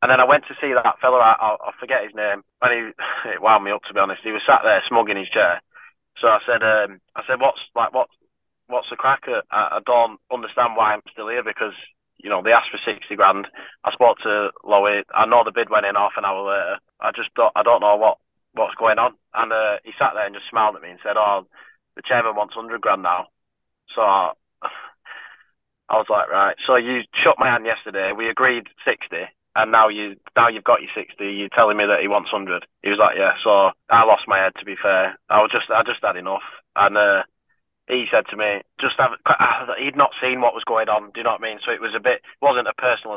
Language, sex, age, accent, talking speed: English, male, 20-39, British, 250 wpm